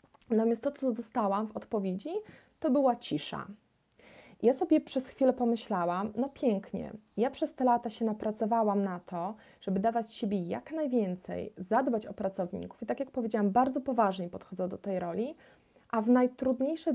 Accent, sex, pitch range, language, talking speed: native, female, 210-260 Hz, Polish, 160 wpm